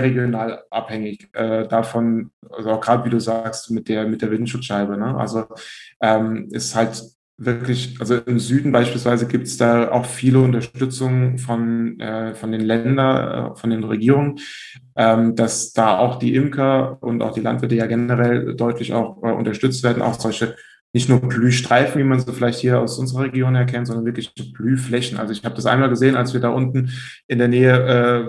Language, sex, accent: German, male, German